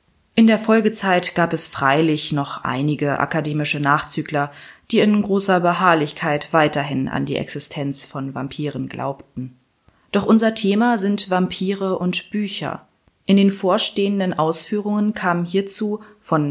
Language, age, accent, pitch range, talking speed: German, 20-39, German, 160-205 Hz, 125 wpm